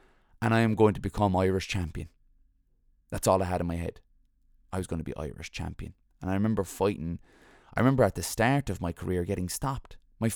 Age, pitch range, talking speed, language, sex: 20-39, 85-105 Hz, 215 wpm, English, male